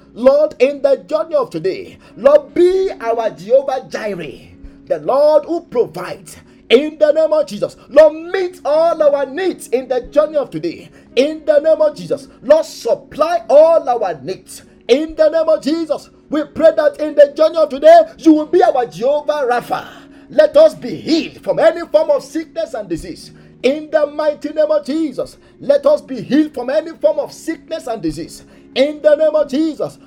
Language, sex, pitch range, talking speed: English, male, 270-315 Hz, 185 wpm